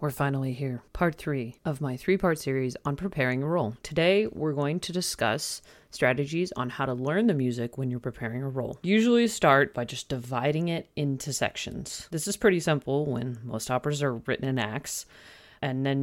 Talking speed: 190 wpm